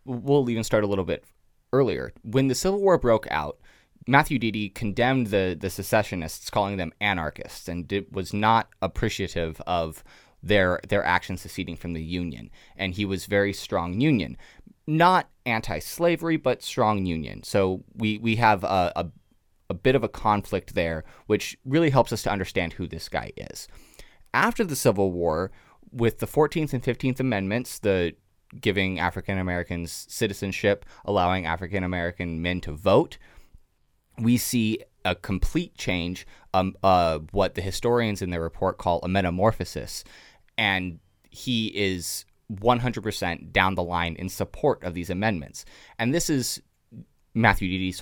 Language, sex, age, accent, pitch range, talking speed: English, male, 20-39, American, 90-115 Hz, 150 wpm